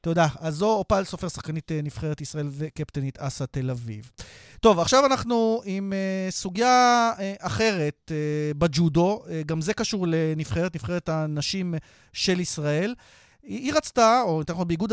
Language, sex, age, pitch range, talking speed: Hebrew, male, 30-49, 150-205 Hz, 130 wpm